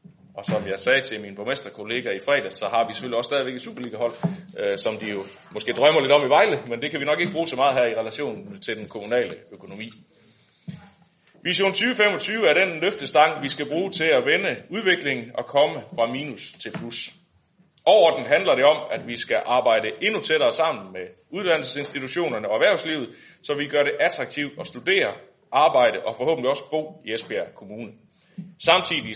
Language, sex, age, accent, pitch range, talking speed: Danish, male, 30-49, native, 130-185 Hz, 185 wpm